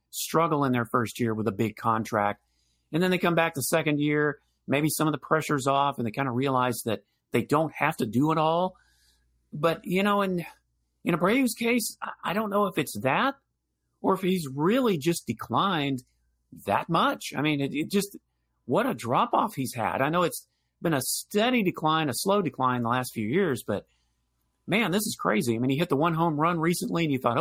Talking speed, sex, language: 215 wpm, male, English